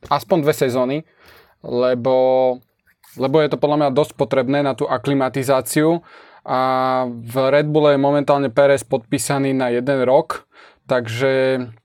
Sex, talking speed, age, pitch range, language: male, 130 wpm, 20-39, 130-150 Hz, Slovak